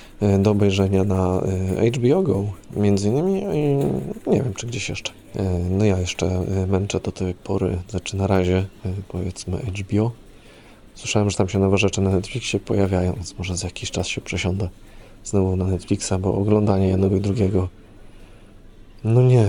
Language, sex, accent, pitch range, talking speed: Polish, male, native, 95-110 Hz, 155 wpm